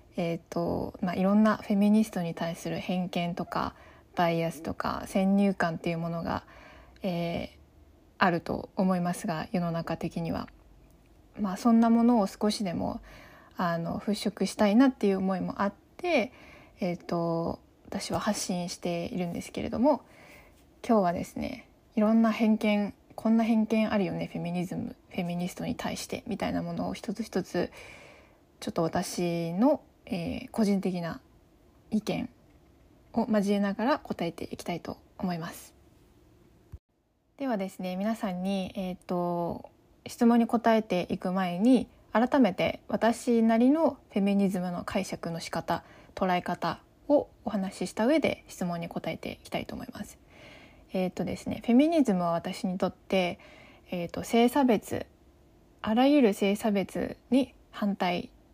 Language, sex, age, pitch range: Japanese, female, 20-39, 175-225 Hz